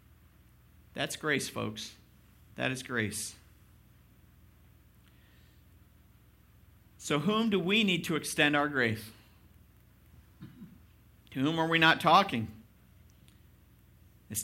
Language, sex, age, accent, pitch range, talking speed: English, male, 50-69, American, 105-155 Hz, 90 wpm